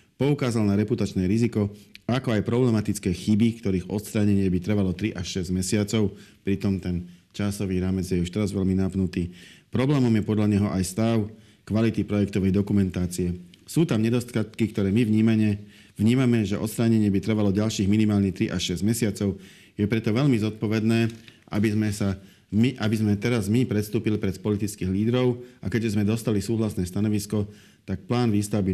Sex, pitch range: male, 95-110 Hz